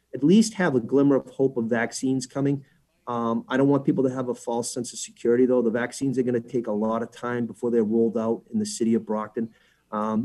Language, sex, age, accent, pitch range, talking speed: English, male, 30-49, American, 115-130 Hz, 250 wpm